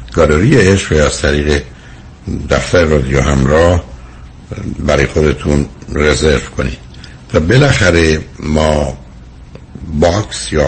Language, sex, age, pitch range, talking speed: Persian, male, 60-79, 65-80 Hz, 90 wpm